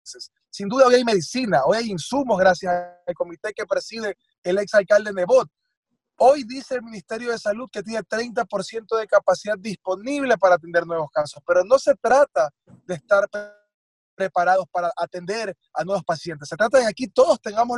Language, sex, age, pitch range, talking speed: Spanish, male, 30-49, 185-245 Hz, 170 wpm